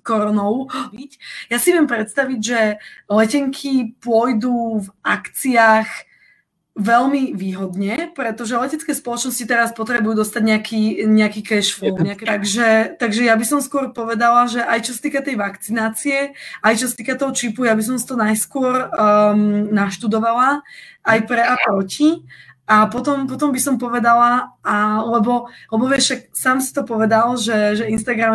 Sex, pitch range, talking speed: female, 215-250 Hz, 145 wpm